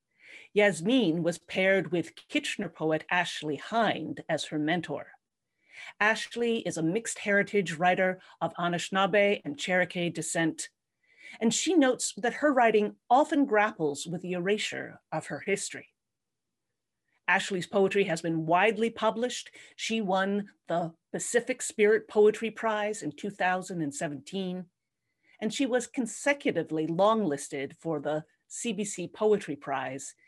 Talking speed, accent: 120 wpm, American